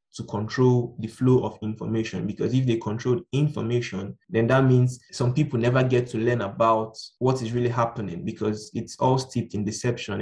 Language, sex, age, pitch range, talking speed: English, male, 20-39, 110-125 Hz, 180 wpm